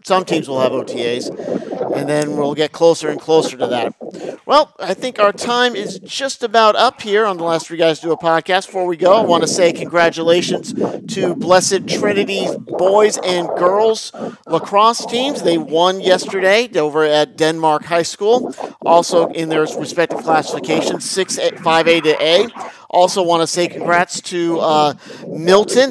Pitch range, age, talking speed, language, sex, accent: 155-195 Hz, 50-69, 170 wpm, English, male, American